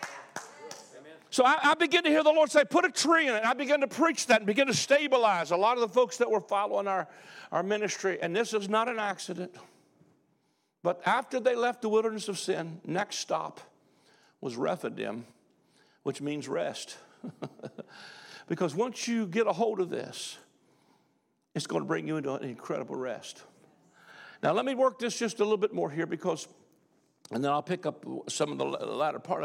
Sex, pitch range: male, 160-240 Hz